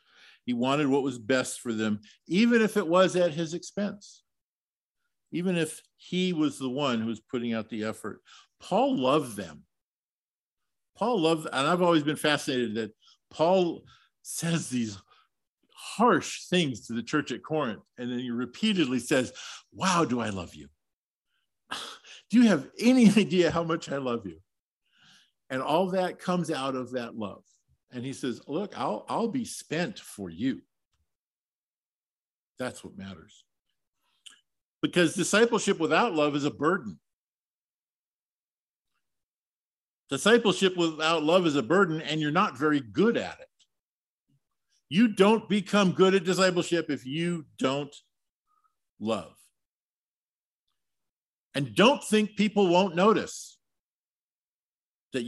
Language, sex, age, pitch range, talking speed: English, male, 50-69, 125-190 Hz, 135 wpm